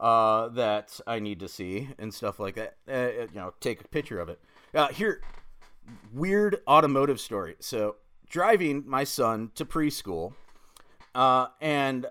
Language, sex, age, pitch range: English, male, 30-49, 125-175 Hz